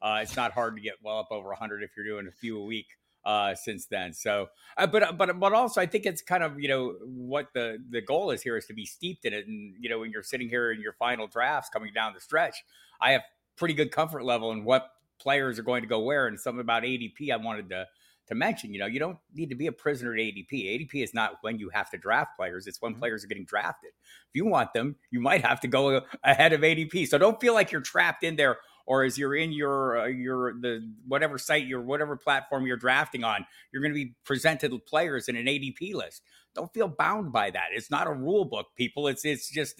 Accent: American